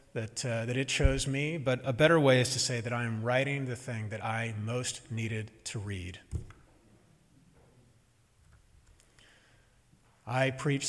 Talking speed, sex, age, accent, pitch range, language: 150 wpm, male, 40-59, American, 115-150 Hz, English